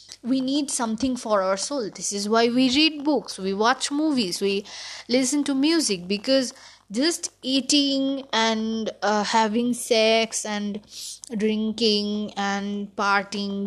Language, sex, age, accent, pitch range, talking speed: Bengali, female, 20-39, native, 205-270 Hz, 130 wpm